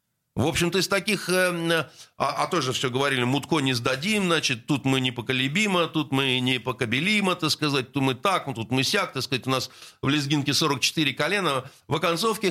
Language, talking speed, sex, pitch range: Russian, 180 wpm, male, 140-180 Hz